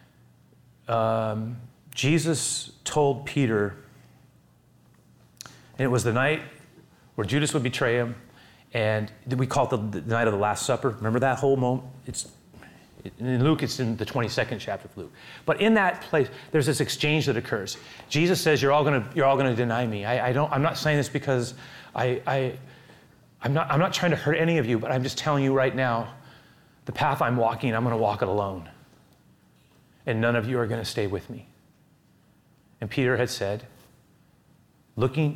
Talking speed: 185 wpm